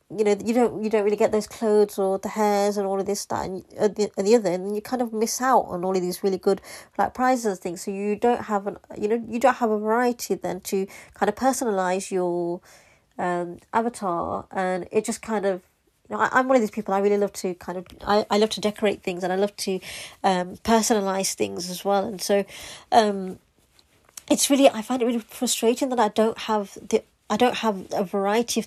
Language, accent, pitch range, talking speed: English, British, 190-225 Hz, 240 wpm